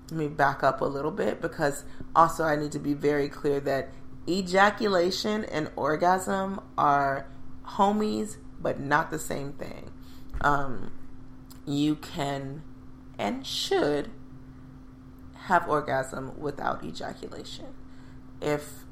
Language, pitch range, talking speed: English, 130-160 Hz, 110 wpm